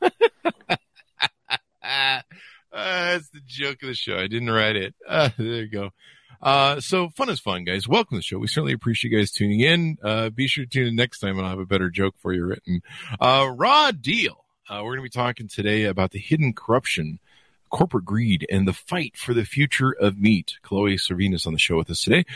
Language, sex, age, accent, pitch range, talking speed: English, male, 50-69, American, 100-145 Hz, 215 wpm